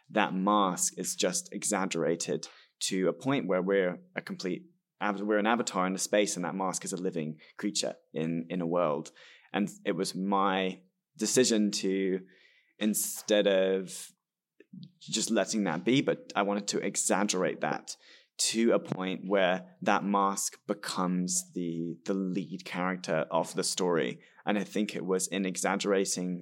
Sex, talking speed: male, 155 wpm